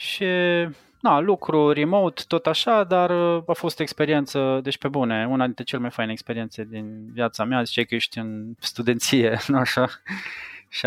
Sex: male